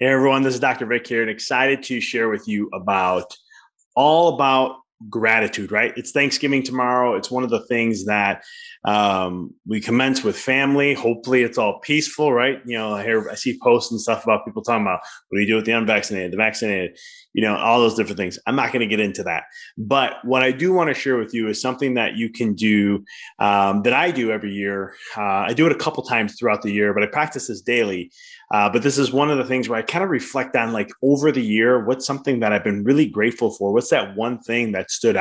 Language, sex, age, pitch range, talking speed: English, male, 20-39, 110-140 Hz, 240 wpm